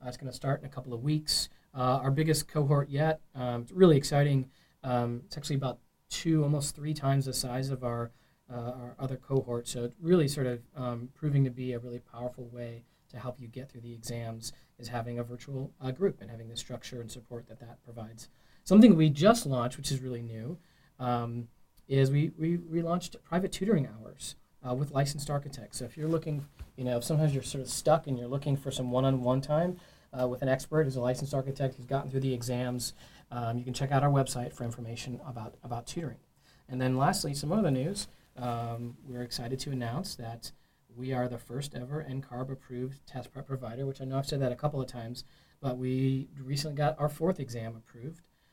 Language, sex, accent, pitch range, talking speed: English, male, American, 120-145 Hz, 215 wpm